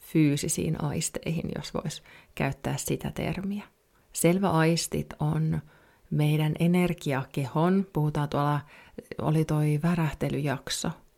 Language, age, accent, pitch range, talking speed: Finnish, 30-49, native, 140-165 Hz, 90 wpm